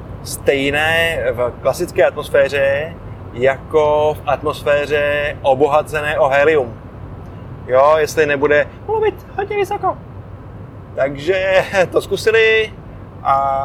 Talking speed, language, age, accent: 90 wpm, Czech, 20-39, native